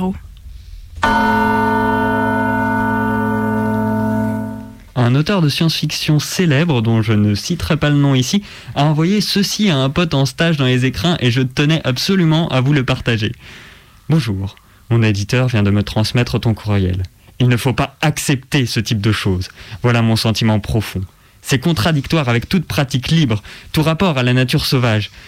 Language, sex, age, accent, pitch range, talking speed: French, male, 20-39, French, 110-140 Hz, 155 wpm